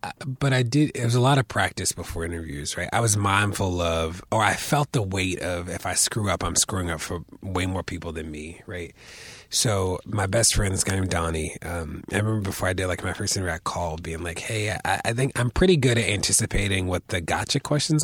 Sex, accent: male, American